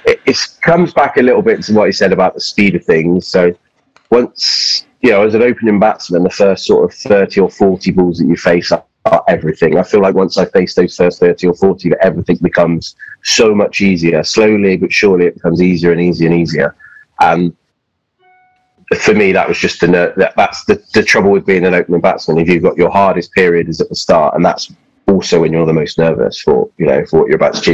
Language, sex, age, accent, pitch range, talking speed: English, male, 30-49, British, 85-100 Hz, 230 wpm